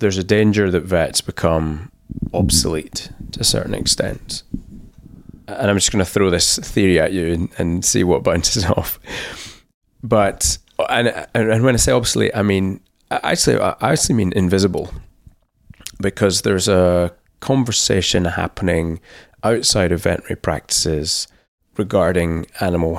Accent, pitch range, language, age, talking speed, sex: British, 85-100 Hz, English, 20-39, 140 wpm, male